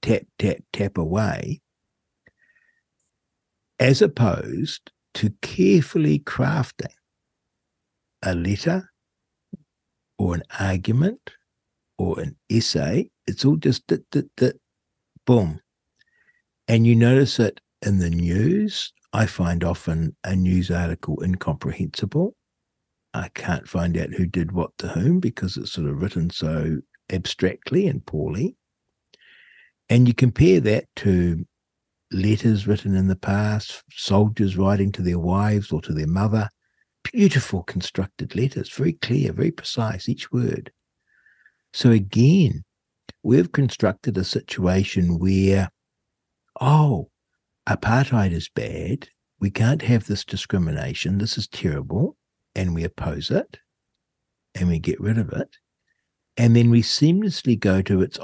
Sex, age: male, 60-79